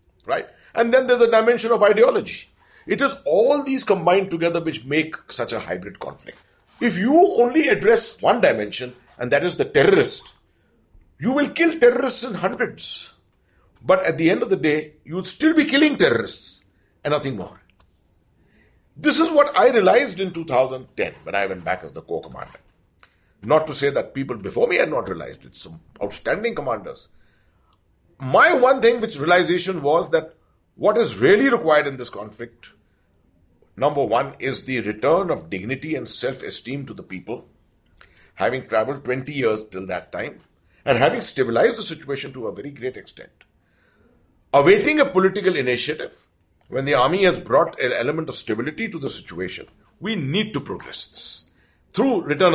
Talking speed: 170 wpm